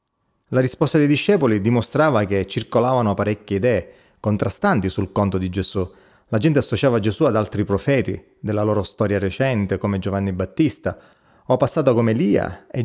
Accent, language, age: native, Italian, 30-49